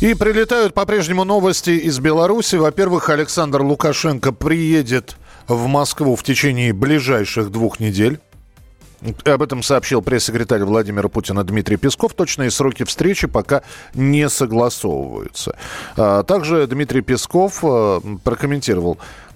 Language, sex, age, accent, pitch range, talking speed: Russian, male, 40-59, native, 115-155 Hz, 110 wpm